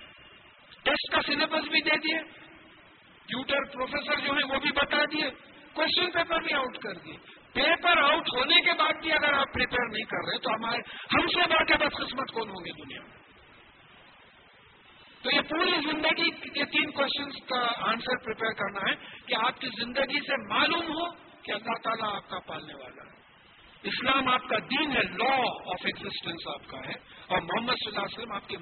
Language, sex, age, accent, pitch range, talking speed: English, male, 50-69, Indian, 215-285 Hz, 145 wpm